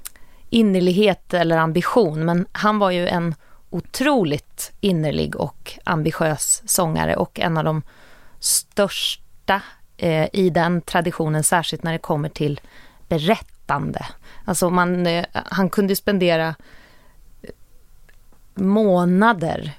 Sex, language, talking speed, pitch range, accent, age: female, Swedish, 95 wpm, 160-190 Hz, native, 30-49